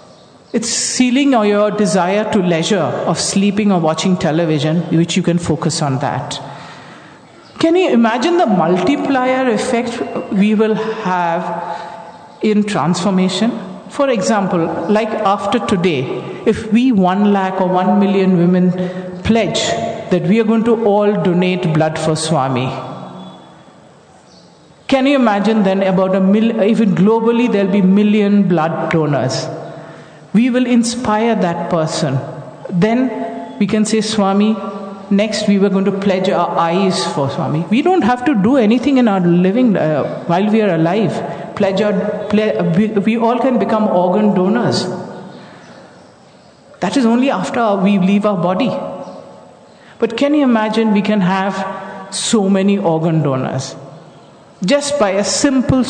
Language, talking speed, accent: English, 145 wpm, Indian